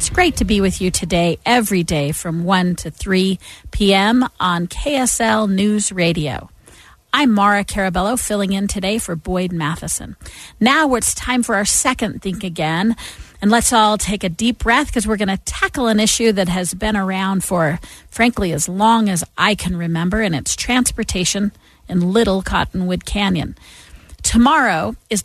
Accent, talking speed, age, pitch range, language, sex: American, 165 wpm, 40-59, 180-225 Hz, English, female